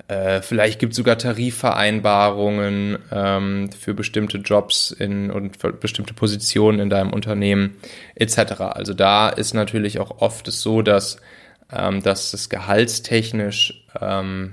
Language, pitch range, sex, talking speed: German, 100-115 Hz, male, 130 wpm